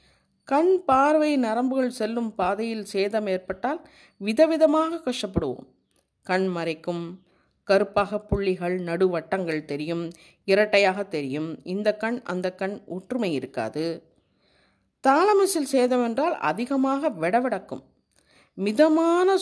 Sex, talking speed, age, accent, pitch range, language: female, 90 wpm, 30-49, native, 190-285 Hz, Tamil